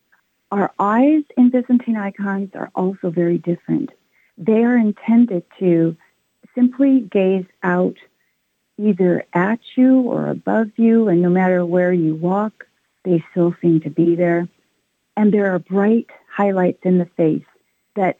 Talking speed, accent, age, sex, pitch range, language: 140 wpm, American, 50-69, female, 170-215 Hz, English